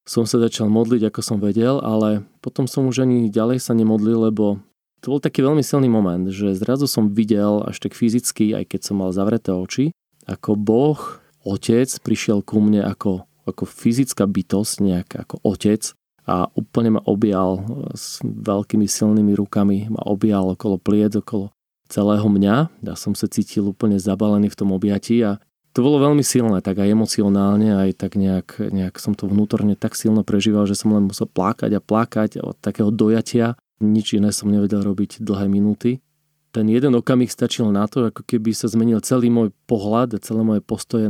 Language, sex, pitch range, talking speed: Slovak, male, 100-120 Hz, 180 wpm